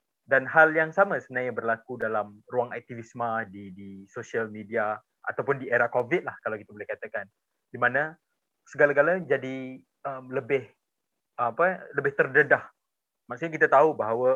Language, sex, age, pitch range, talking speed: Malay, male, 20-39, 105-140 Hz, 145 wpm